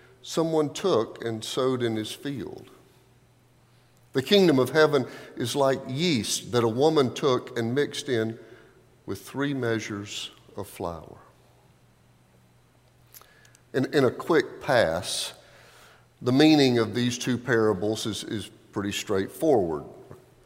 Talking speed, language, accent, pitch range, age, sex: 120 wpm, English, American, 100-130 Hz, 50-69, male